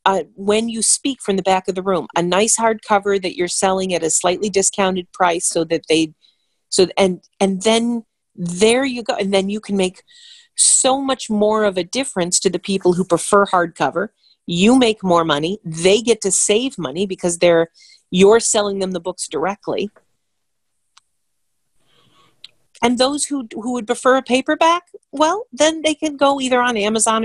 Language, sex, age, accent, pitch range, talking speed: English, female, 40-59, American, 180-235 Hz, 180 wpm